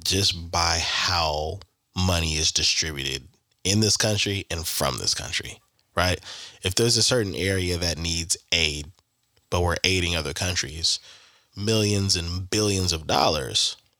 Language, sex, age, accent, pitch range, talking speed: English, male, 20-39, American, 90-105 Hz, 135 wpm